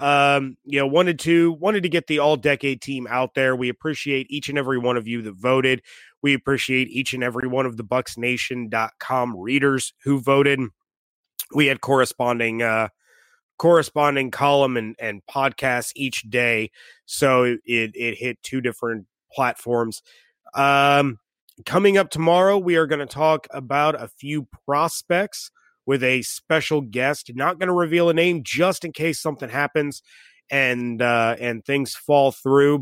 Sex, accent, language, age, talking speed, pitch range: male, American, English, 30-49, 160 wpm, 120-155 Hz